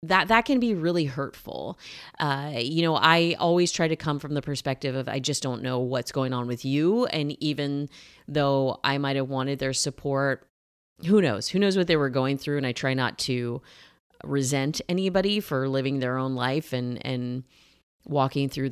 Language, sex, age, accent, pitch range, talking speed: English, female, 30-49, American, 135-195 Hz, 190 wpm